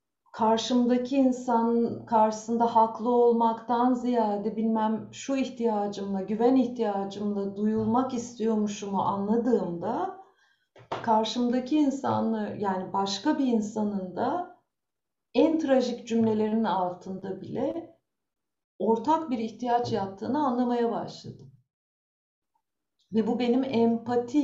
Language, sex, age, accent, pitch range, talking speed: Turkish, female, 50-69, native, 215-255 Hz, 90 wpm